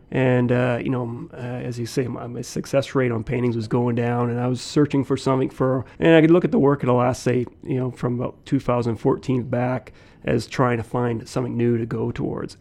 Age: 30-49